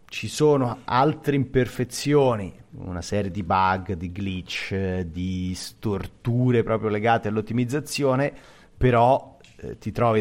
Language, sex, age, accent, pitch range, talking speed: Italian, male, 30-49, native, 95-115 Hz, 110 wpm